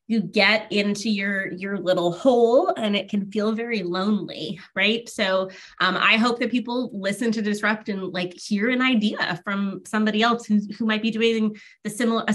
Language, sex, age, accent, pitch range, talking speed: English, female, 20-39, American, 185-225 Hz, 185 wpm